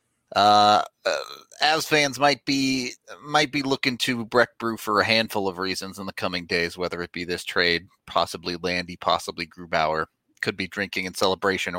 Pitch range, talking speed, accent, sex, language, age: 90-115 Hz, 180 wpm, American, male, English, 30-49